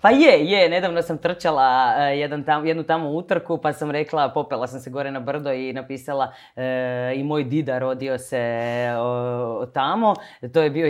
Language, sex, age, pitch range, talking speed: Croatian, female, 20-39, 130-165 Hz, 185 wpm